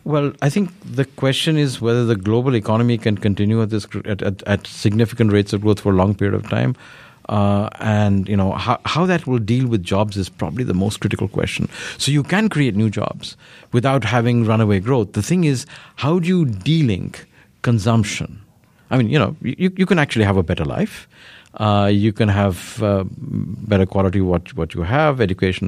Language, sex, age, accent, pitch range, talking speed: English, male, 50-69, Indian, 100-130 Hz, 200 wpm